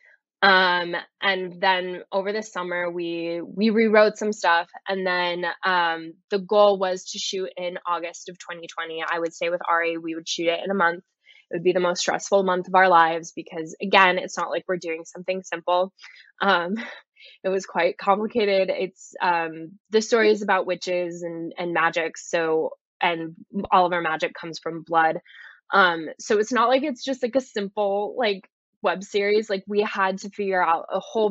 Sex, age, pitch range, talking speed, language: female, 10-29, 170-200 Hz, 190 wpm, English